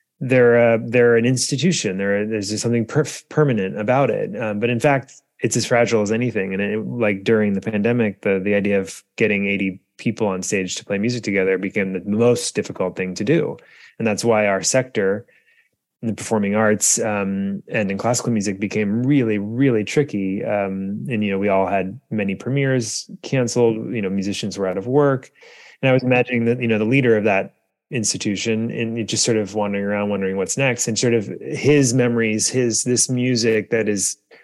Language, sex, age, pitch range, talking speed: English, male, 20-39, 100-120 Hz, 195 wpm